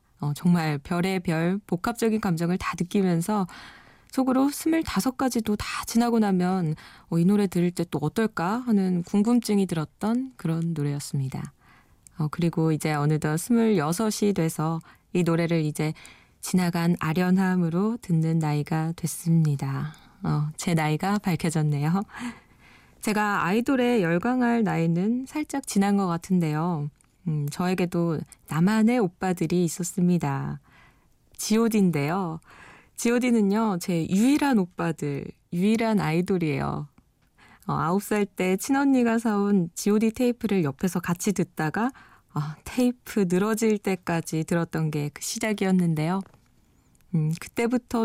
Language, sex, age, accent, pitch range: Korean, female, 20-39, native, 160-215 Hz